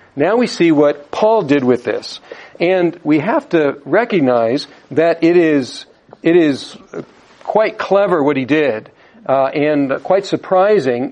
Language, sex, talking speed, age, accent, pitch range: English, male, 145 wpm, 50-69, American, 155-210 Hz